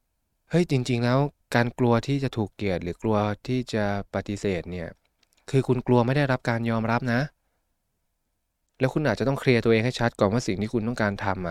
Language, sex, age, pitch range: Thai, male, 20-39, 105-140 Hz